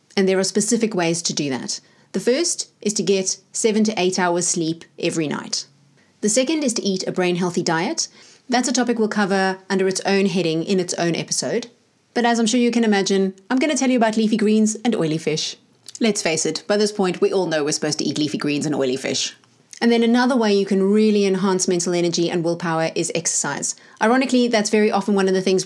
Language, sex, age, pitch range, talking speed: English, female, 30-49, 175-220 Hz, 230 wpm